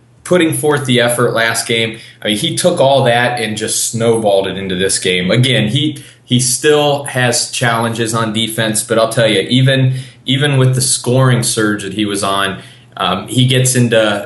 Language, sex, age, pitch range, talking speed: English, male, 20-39, 105-125 Hz, 190 wpm